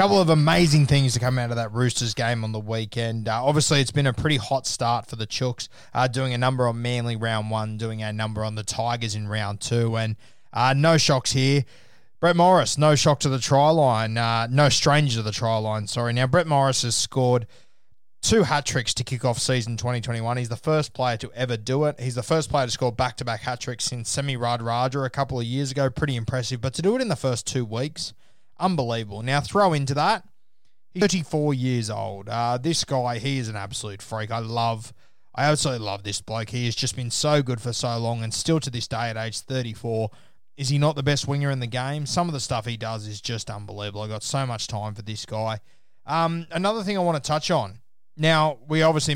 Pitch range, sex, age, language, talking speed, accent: 115-145 Hz, male, 20-39, English, 230 wpm, Australian